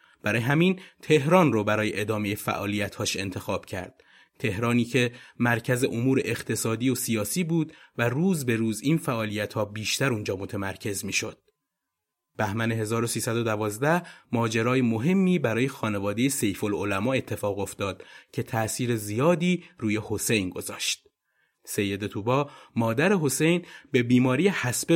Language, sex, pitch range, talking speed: Persian, male, 110-145 Hz, 120 wpm